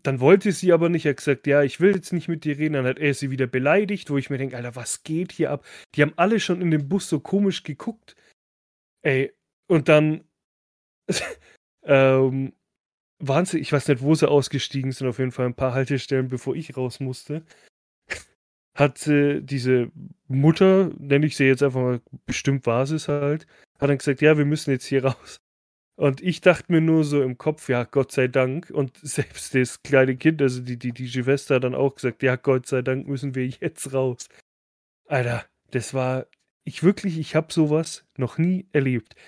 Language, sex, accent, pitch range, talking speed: German, male, German, 130-155 Hz, 200 wpm